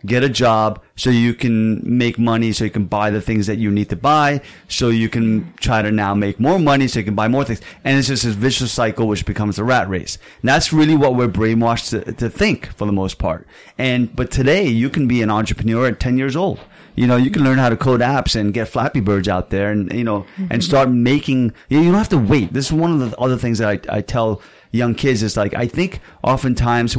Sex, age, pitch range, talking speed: male, 30-49, 110-135 Hz, 255 wpm